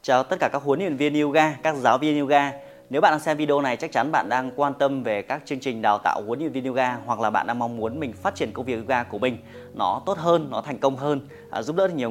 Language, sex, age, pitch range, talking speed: Vietnamese, male, 20-39, 110-140 Hz, 285 wpm